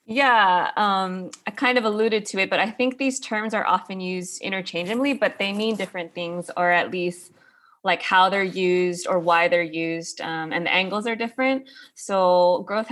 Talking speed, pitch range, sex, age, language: 190 wpm, 170-210 Hz, female, 20-39, English